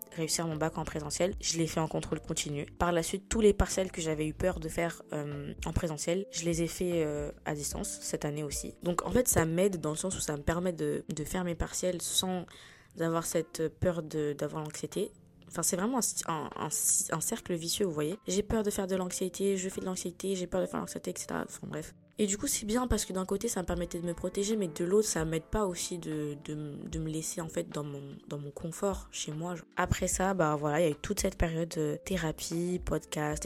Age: 20-39